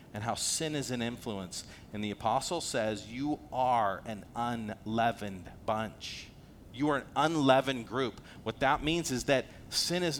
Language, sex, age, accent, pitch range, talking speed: English, male, 40-59, American, 125-155 Hz, 160 wpm